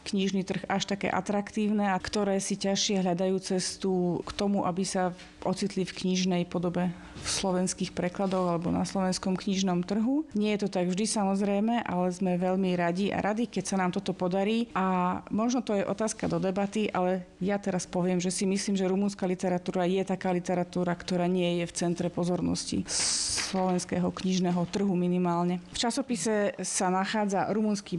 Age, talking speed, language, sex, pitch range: 30-49, 170 wpm, Slovak, female, 180-200 Hz